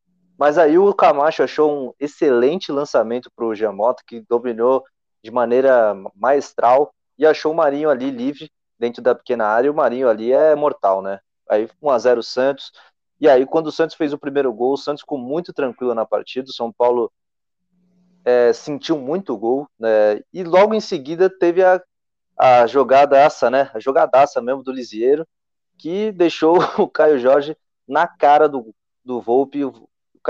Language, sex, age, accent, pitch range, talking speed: Portuguese, male, 20-39, Brazilian, 115-145 Hz, 175 wpm